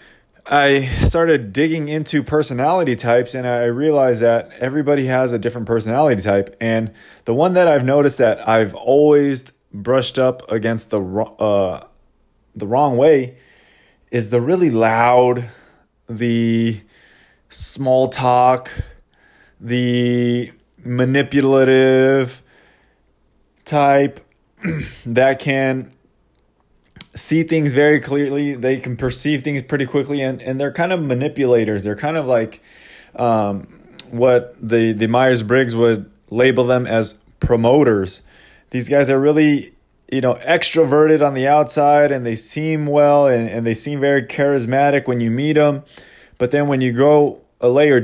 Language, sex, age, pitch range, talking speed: English, male, 20-39, 115-145 Hz, 130 wpm